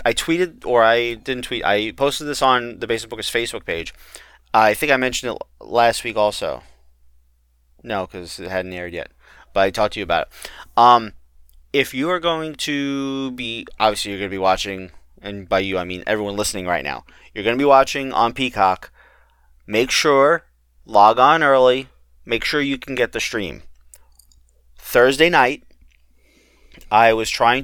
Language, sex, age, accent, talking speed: English, male, 30-49, American, 180 wpm